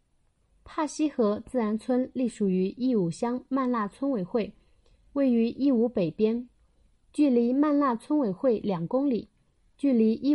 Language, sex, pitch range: Chinese, female, 210-275 Hz